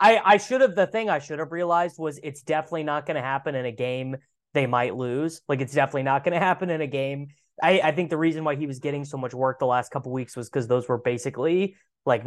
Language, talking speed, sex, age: English, 255 wpm, male, 20-39